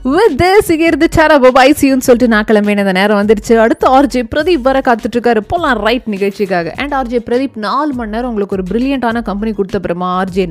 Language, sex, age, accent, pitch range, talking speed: Tamil, female, 20-39, native, 205-275 Hz, 160 wpm